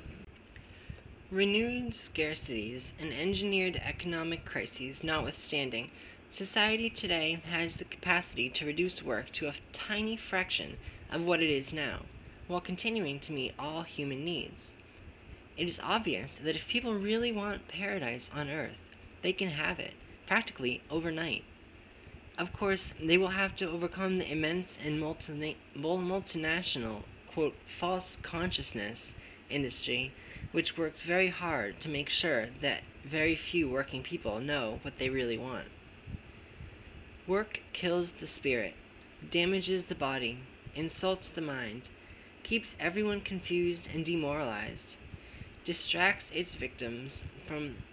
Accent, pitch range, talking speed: American, 130-180 Hz, 125 wpm